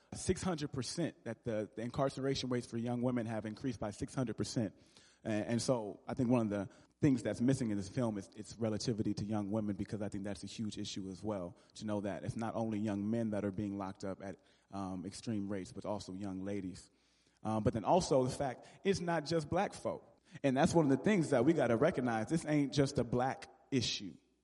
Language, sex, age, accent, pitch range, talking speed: English, male, 30-49, American, 105-135 Hz, 220 wpm